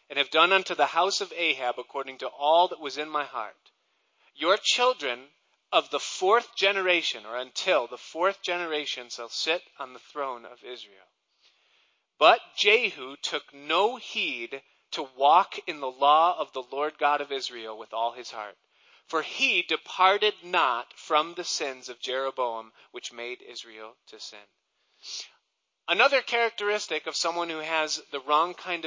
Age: 40-59